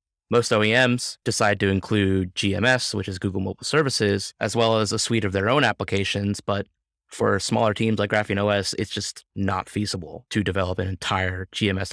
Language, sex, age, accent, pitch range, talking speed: English, male, 20-39, American, 95-110 Hz, 180 wpm